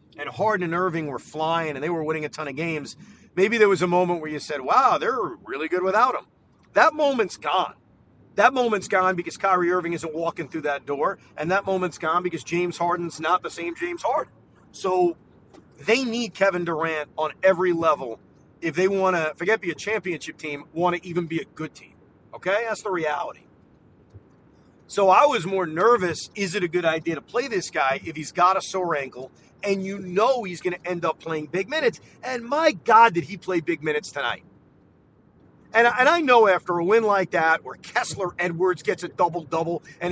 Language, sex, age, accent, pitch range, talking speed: English, male, 40-59, American, 160-200 Hz, 205 wpm